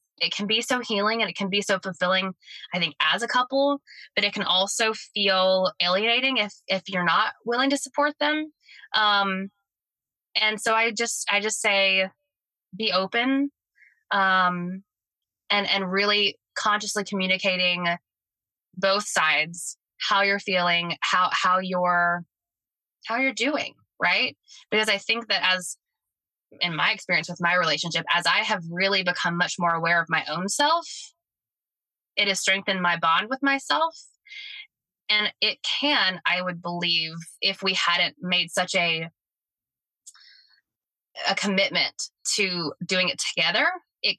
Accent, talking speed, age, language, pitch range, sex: American, 145 wpm, 20-39, English, 175-225 Hz, female